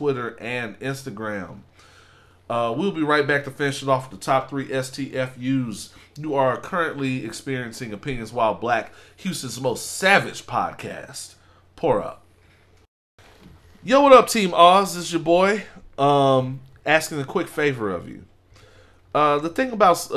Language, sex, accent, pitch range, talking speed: English, male, American, 105-145 Hz, 150 wpm